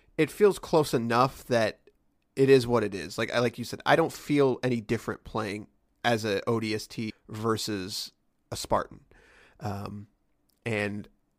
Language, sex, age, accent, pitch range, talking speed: English, male, 30-49, American, 115-145 Hz, 155 wpm